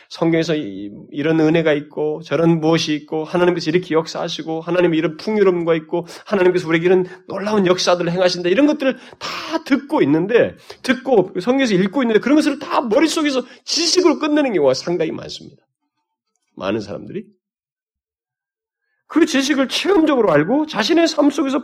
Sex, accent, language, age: male, native, Korean, 40-59